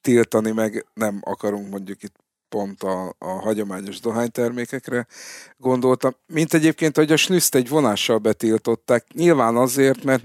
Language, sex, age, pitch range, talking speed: Hungarian, male, 50-69, 100-120 Hz, 135 wpm